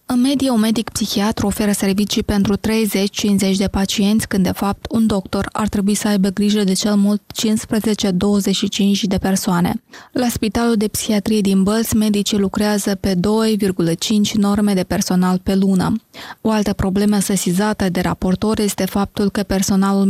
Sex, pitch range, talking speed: female, 195-220 Hz, 155 wpm